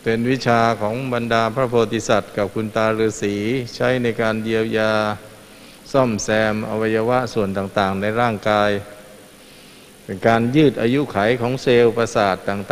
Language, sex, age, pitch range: Thai, male, 60-79, 110-125 Hz